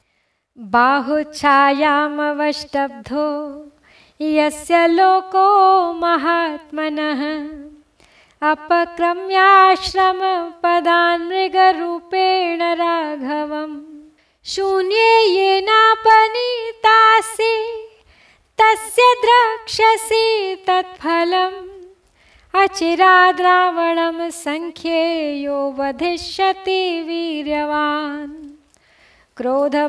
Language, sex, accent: Hindi, female, native